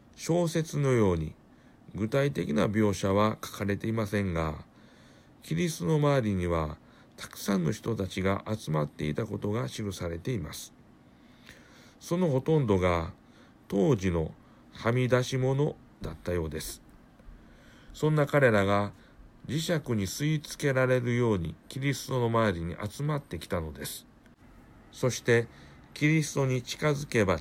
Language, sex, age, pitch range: Japanese, male, 60-79, 95-135 Hz